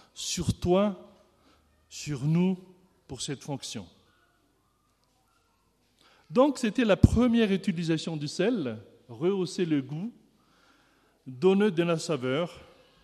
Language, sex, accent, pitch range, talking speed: French, male, French, 125-185 Hz, 95 wpm